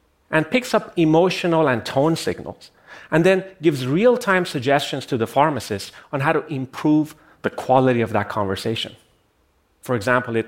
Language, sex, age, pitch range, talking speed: English, male, 30-49, 105-155 Hz, 155 wpm